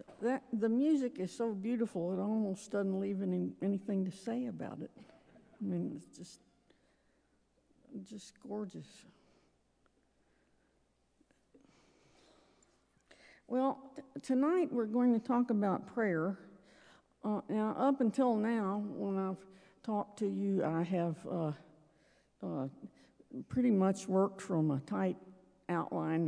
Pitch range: 160-220 Hz